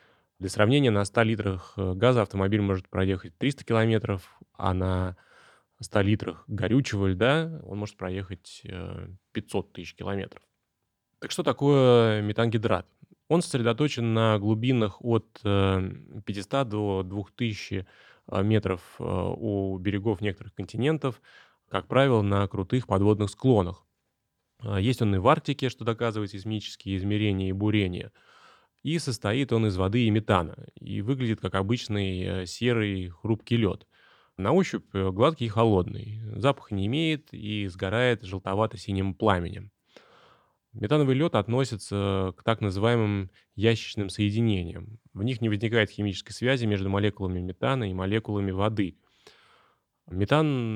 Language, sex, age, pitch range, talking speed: Russian, male, 20-39, 95-115 Hz, 125 wpm